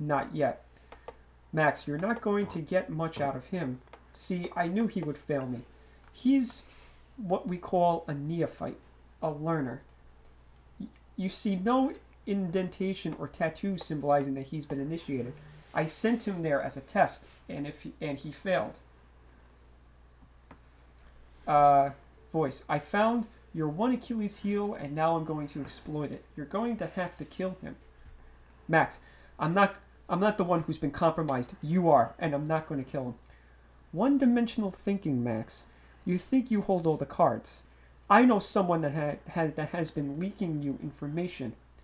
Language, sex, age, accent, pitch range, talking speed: English, male, 40-59, American, 115-185 Hz, 160 wpm